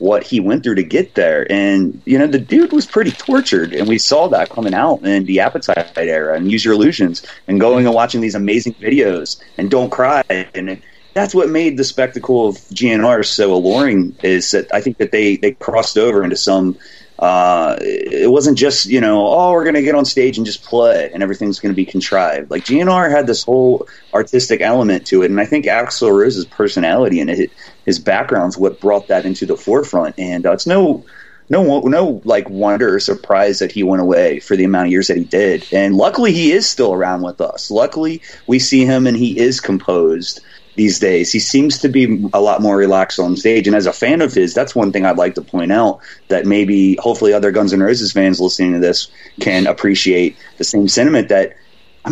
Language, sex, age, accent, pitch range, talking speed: English, male, 30-49, American, 95-140 Hz, 215 wpm